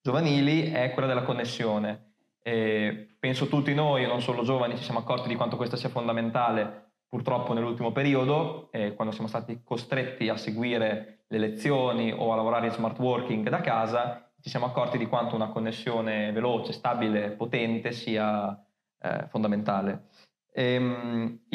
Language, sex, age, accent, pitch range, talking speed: Italian, male, 20-39, native, 110-130 Hz, 155 wpm